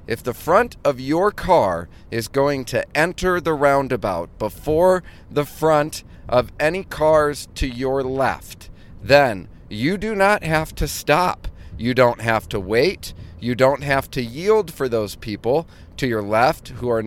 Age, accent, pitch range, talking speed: 40-59, American, 100-135 Hz, 160 wpm